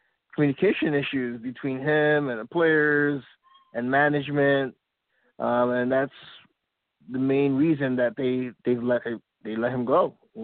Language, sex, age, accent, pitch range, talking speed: English, male, 20-39, American, 125-150 Hz, 145 wpm